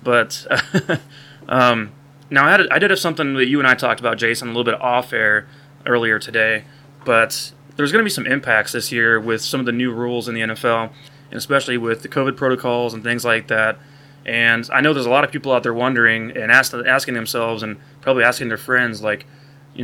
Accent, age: American, 20-39